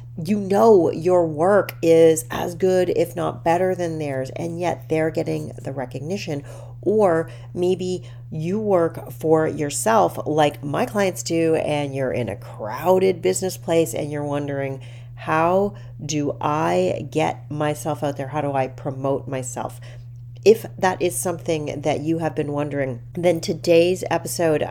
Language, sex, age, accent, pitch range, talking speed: English, female, 40-59, American, 125-170 Hz, 150 wpm